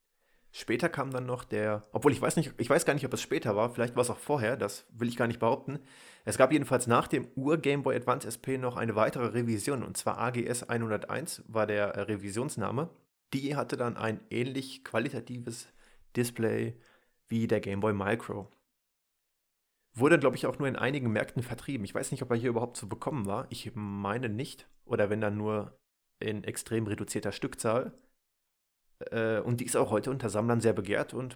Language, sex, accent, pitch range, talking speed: German, male, German, 105-125 Hz, 185 wpm